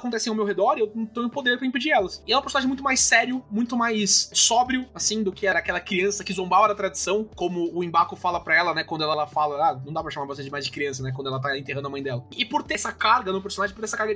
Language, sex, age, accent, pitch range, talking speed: Portuguese, male, 20-39, Brazilian, 170-240 Hz, 305 wpm